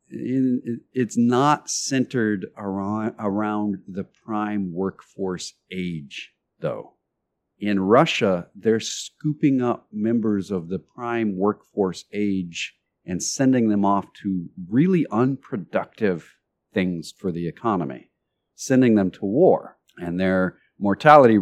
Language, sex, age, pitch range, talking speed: English, male, 50-69, 95-120 Hz, 110 wpm